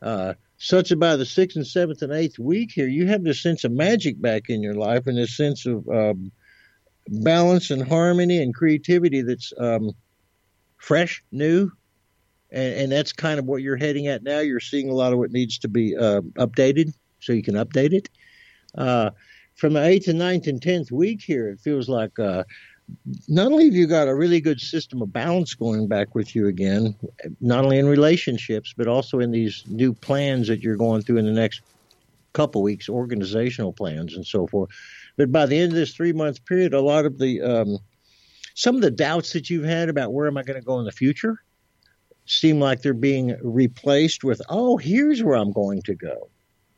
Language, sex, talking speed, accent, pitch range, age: English, male, 205 wpm, American, 115-160 Hz, 60-79